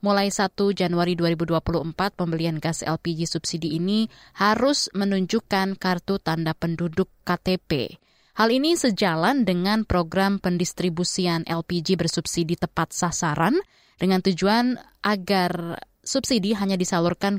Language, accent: Indonesian, native